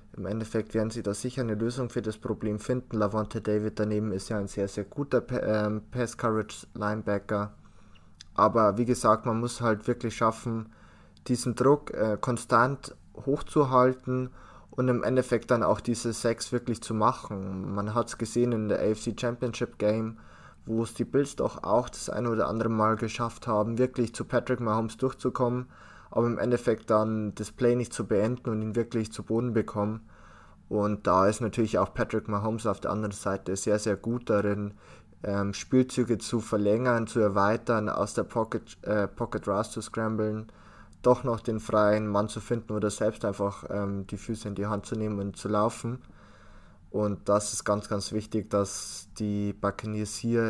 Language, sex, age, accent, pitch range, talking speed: German, male, 20-39, German, 105-120 Hz, 170 wpm